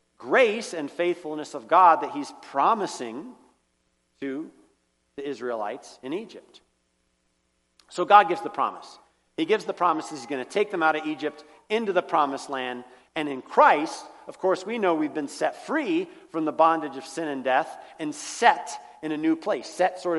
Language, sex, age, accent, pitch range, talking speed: English, male, 40-59, American, 115-170 Hz, 180 wpm